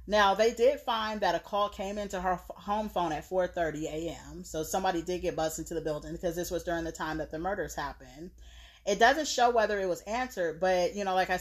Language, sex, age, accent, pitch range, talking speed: English, female, 30-49, American, 165-200 Hz, 235 wpm